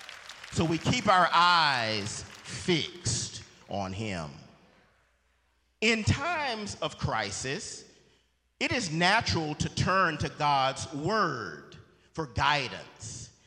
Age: 40-59